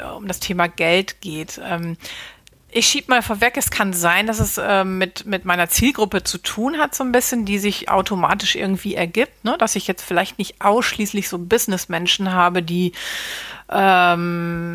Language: German